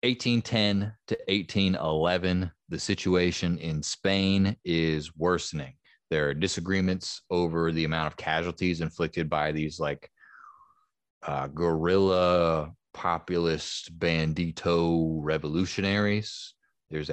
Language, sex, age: English, male, 30-49